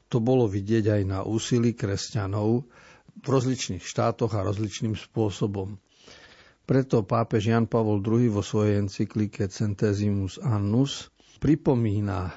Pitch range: 105-125 Hz